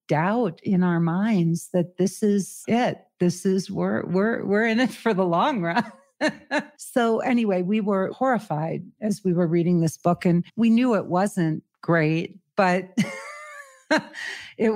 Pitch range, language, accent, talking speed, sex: 170-205 Hz, English, American, 155 wpm, female